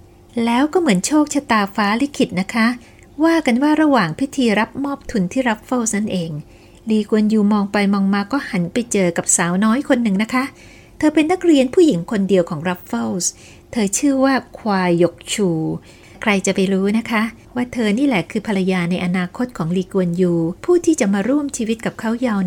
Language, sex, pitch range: Thai, female, 180-255 Hz